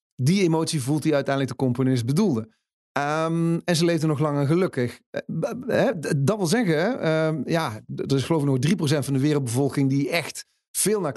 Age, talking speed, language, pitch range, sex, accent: 40-59, 165 wpm, Dutch, 140-180 Hz, male, Dutch